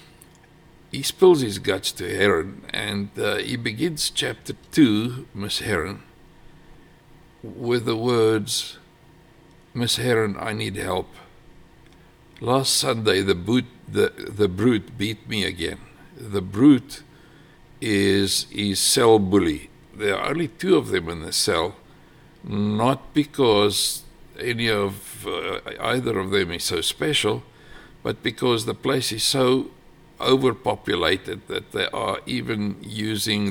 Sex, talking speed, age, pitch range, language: male, 125 wpm, 60-79, 100-140 Hz, English